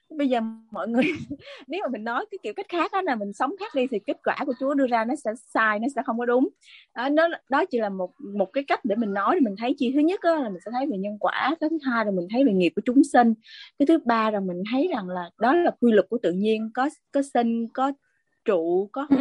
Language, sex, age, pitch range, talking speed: Vietnamese, female, 20-39, 200-280 Hz, 280 wpm